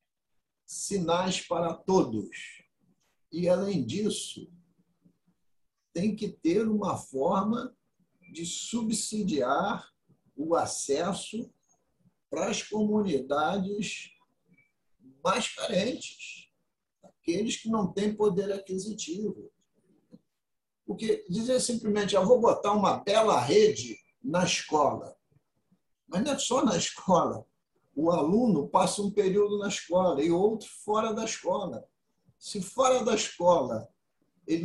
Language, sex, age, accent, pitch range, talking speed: Portuguese, male, 60-79, Brazilian, 180-220 Hz, 105 wpm